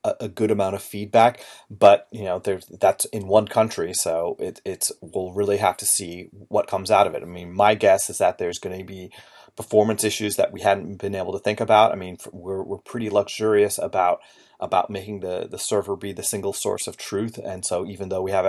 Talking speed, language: 230 wpm, English